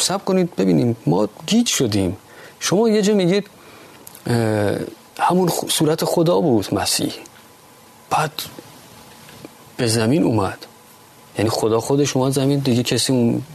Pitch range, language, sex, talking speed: 110-150 Hz, Persian, male, 115 wpm